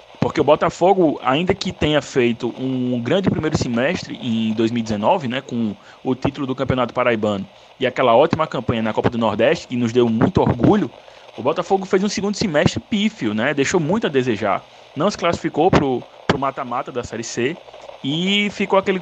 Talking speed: 180 wpm